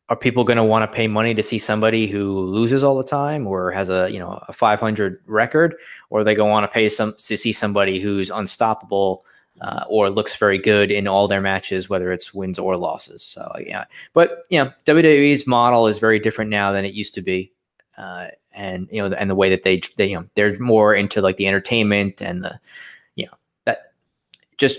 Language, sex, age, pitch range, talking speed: English, male, 20-39, 95-115 Hz, 215 wpm